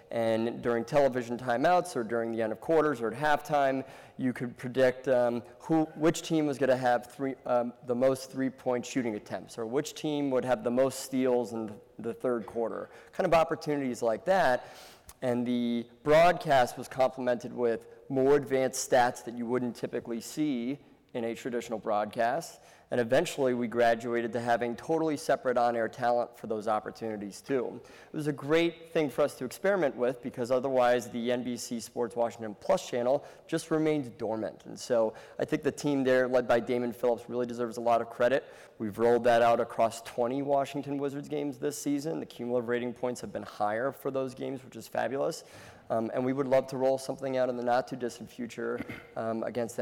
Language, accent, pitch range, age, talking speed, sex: English, American, 120-140 Hz, 30-49, 185 wpm, male